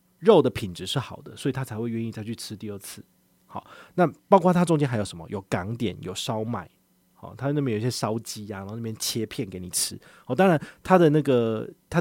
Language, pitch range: Chinese, 105-145 Hz